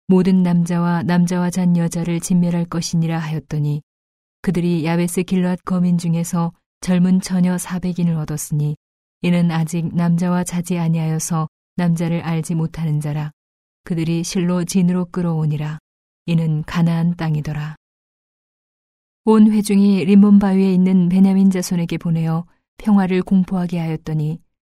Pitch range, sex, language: 165-185 Hz, female, Korean